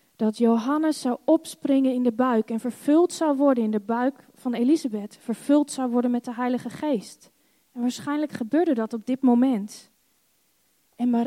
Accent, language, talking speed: Dutch, Dutch, 165 wpm